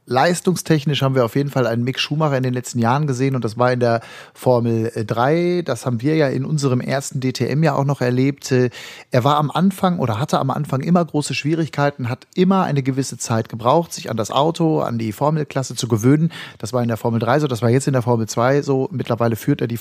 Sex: male